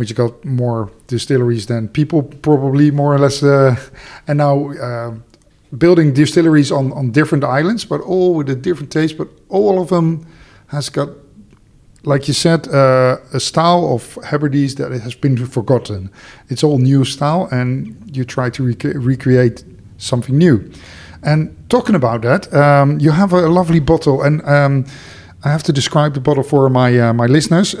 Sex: male